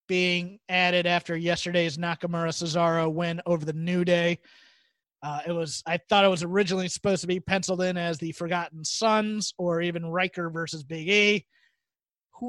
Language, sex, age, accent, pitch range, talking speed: English, male, 30-49, American, 175-215 Hz, 170 wpm